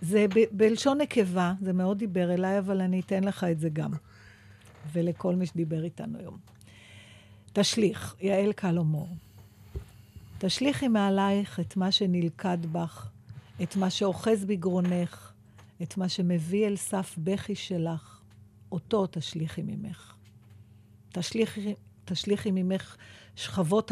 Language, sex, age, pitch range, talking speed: Hebrew, female, 50-69, 145-200 Hz, 115 wpm